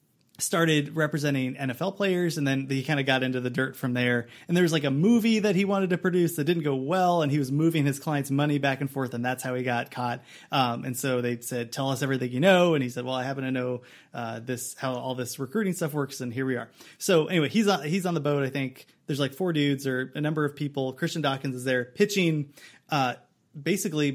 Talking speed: 250 wpm